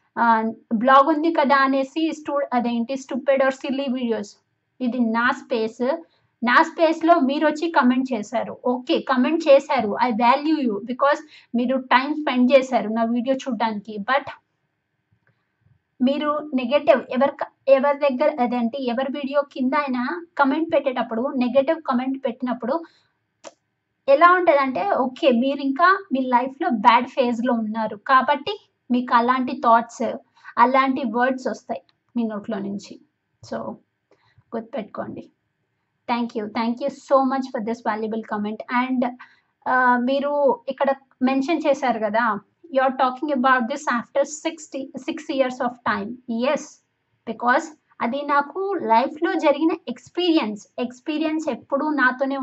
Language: Telugu